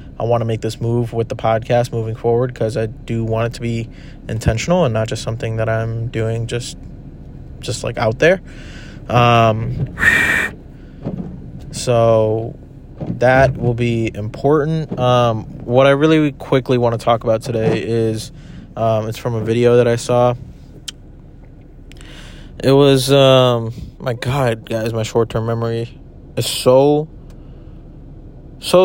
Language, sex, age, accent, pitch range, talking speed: English, male, 20-39, American, 115-130 Hz, 140 wpm